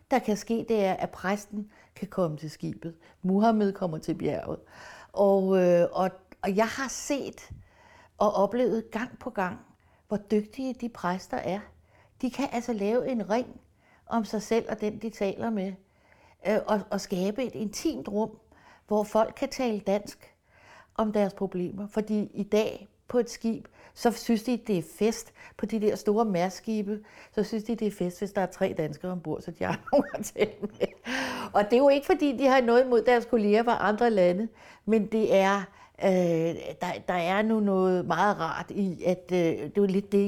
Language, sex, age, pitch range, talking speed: Danish, female, 60-79, 180-225 Hz, 190 wpm